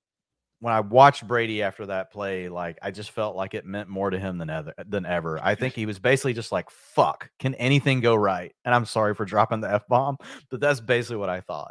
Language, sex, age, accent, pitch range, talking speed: English, male, 40-59, American, 95-115 Hz, 230 wpm